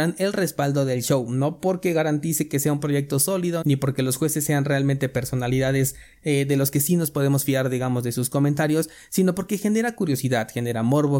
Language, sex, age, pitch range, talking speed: Spanish, male, 30-49, 130-155 Hz, 200 wpm